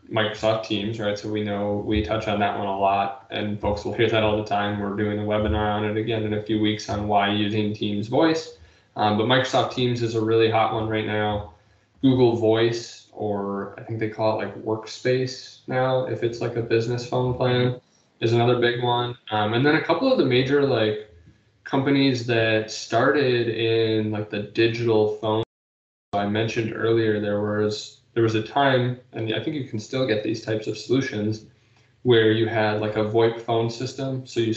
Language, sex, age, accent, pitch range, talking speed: English, male, 10-29, American, 105-120 Hz, 205 wpm